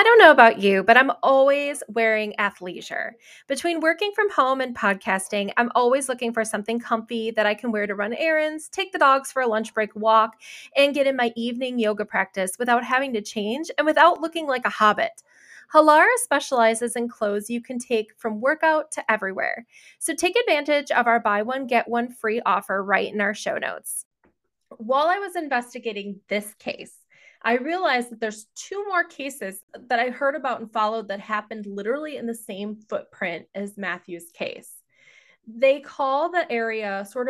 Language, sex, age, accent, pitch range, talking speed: English, female, 20-39, American, 215-280 Hz, 185 wpm